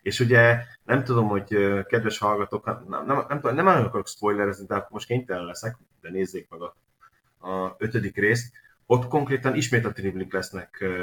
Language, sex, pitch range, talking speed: Hungarian, male, 95-120 Hz, 160 wpm